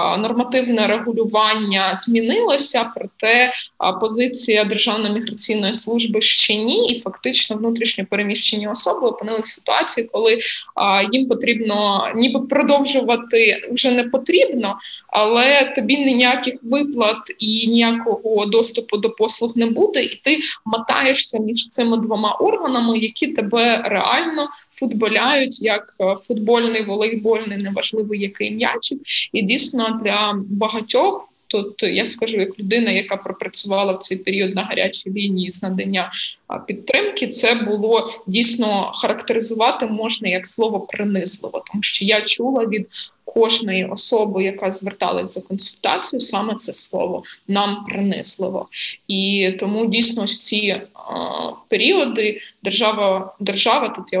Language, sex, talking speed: Ukrainian, female, 120 wpm